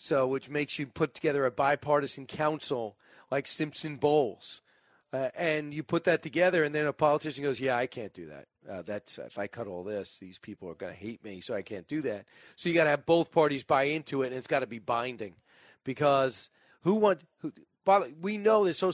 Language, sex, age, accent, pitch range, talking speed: English, male, 40-59, American, 140-165 Hz, 230 wpm